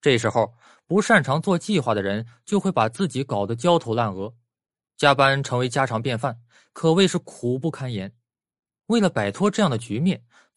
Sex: male